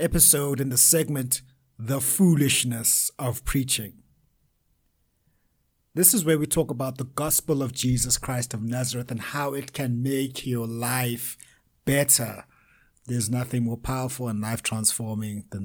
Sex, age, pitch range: male, 60-79, 105-145 Hz